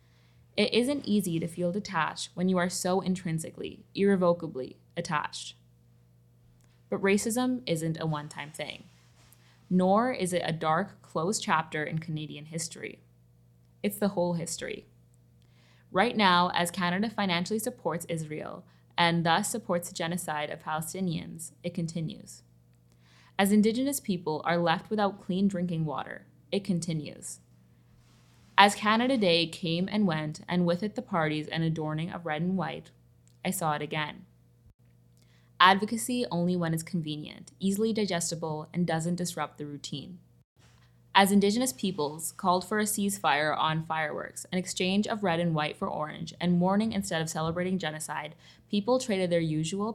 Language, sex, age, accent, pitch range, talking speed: English, female, 20-39, American, 150-190 Hz, 145 wpm